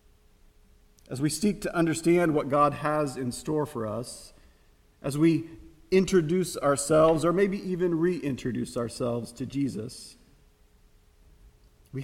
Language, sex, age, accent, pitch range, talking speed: English, male, 40-59, American, 110-170 Hz, 120 wpm